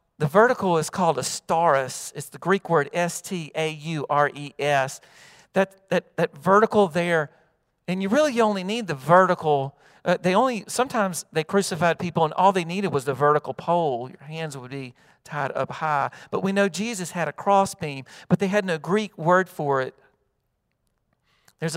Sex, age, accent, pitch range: male, 40-59, American, 140-180 Hz